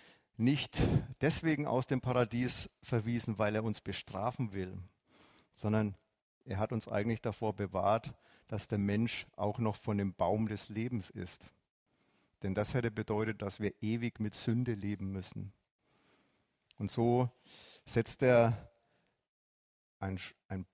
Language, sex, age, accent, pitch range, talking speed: German, male, 50-69, German, 105-125 Hz, 130 wpm